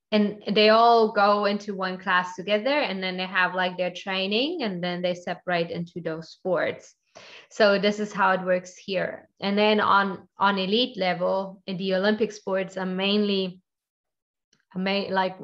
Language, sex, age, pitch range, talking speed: English, female, 20-39, 180-200 Hz, 165 wpm